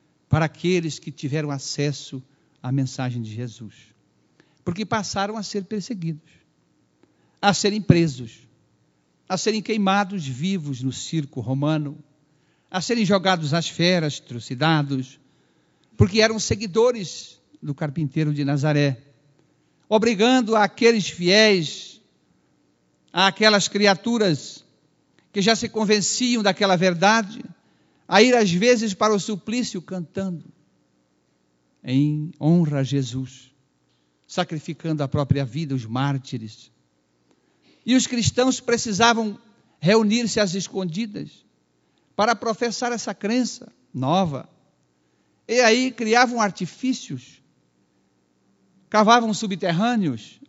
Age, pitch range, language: 60-79, 135-210 Hz, Portuguese